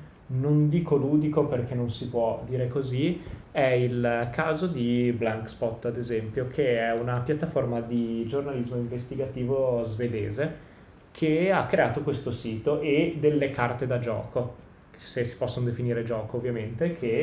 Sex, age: male, 20-39